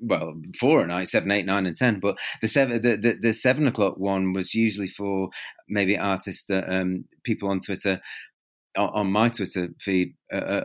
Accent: British